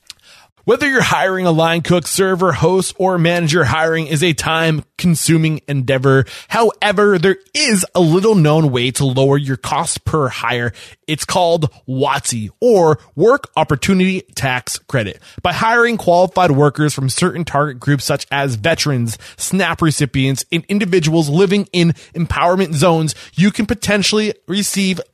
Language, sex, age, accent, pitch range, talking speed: English, male, 20-39, American, 135-185 Hz, 140 wpm